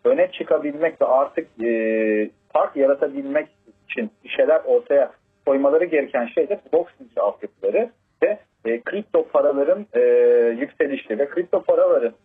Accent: native